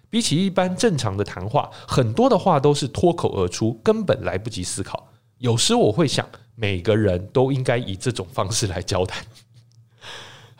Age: 20-39